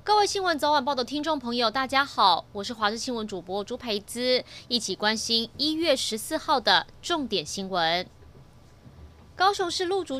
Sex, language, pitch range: female, Chinese, 210-295 Hz